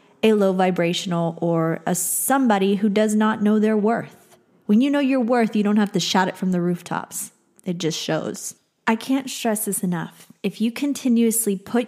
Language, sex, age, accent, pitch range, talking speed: English, female, 20-39, American, 195-250 Hz, 190 wpm